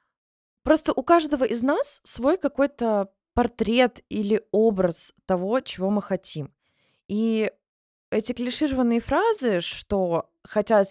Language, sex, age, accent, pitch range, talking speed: Russian, female, 20-39, native, 195-265 Hz, 110 wpm